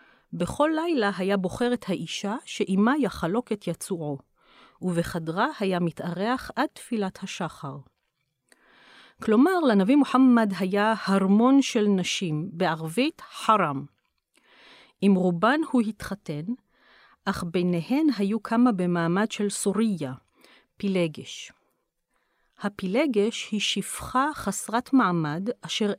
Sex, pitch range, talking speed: female, 180-235 Hz, 100 wpm